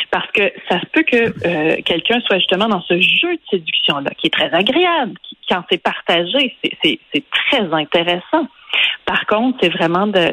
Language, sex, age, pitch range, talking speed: French, female, 30-49, 180-245 Hz, 190 wpm